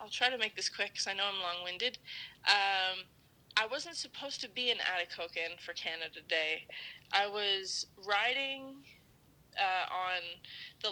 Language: English